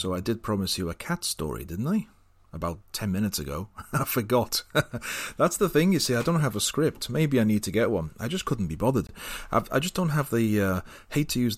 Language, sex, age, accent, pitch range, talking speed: English, male, 30-49, British, 85-110 Hz, 250 wpm